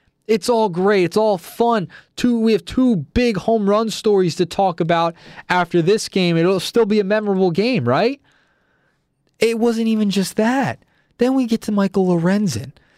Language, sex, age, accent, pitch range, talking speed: English, male, 20-39, American, 165-225 Hz, 175 wpm